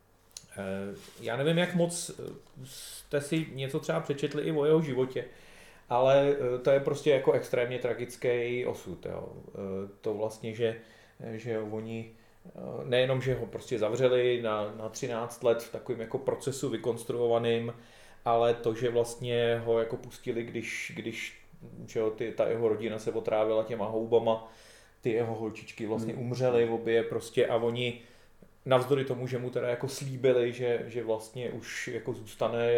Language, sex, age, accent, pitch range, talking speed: Czech, male, 30-49, native, 110-120 Hz, 150 wpm